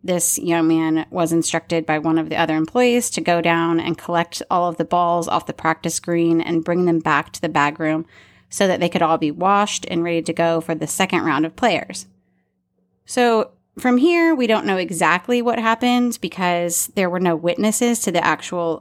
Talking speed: 210 wpm